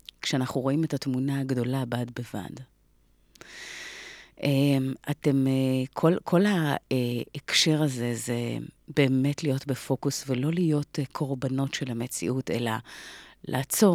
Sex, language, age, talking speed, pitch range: female, Hebrew, 30-49, 100 wpm, 125-150 Hz